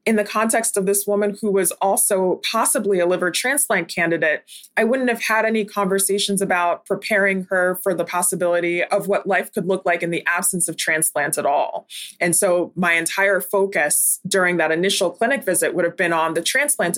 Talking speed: 195 wpm